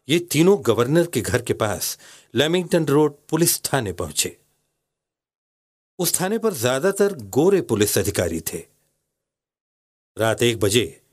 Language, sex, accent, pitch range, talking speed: Hindi, male, native, 105-175 Hz, 125 wpm